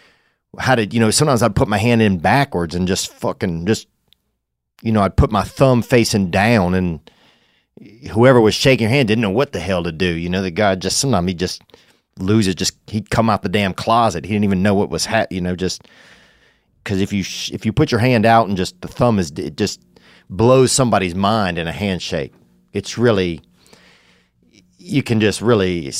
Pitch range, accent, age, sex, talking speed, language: 90-115 Hz, American, 30-49, male, 205 wpm, English